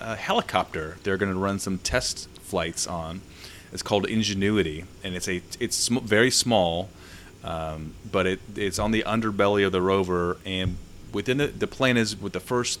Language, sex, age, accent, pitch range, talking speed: English, male, 30-49, American, 85-100 Hz, 180 wpm